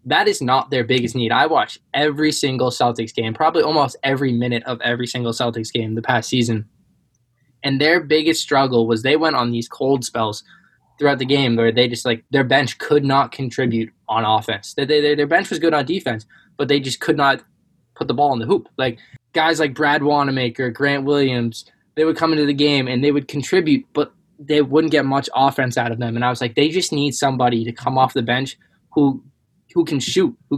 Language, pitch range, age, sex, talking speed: English, 120-150 Hz, 10-29, male, 220 wpm